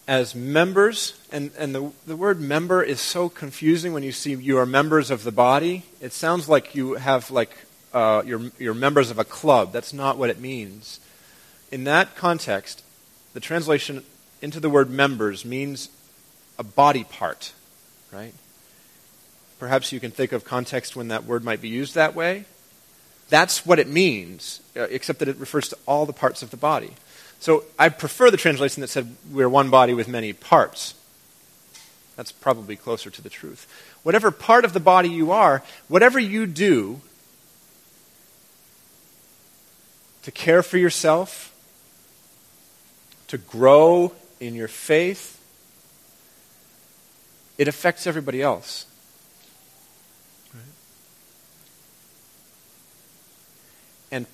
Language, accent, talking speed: English, American, 135 wpm